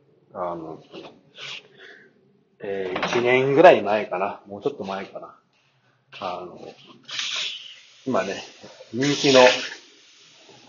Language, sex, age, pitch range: Japanese, male, 40-59, 110-160 Hz